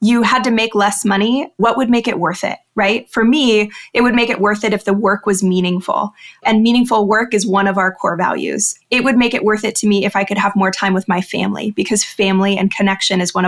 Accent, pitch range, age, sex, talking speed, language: American, 195-230 Hz, 20-39, female, 260 wpm, English